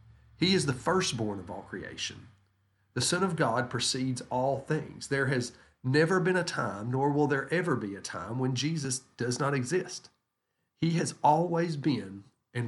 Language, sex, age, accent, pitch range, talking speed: English, male, 40-59, American, 120-160 Hz, 175 wpm